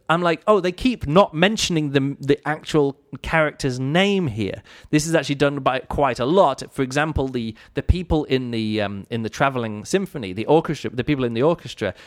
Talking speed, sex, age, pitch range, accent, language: 200 wpm, male, 30-49, 120-170 Hz, British, English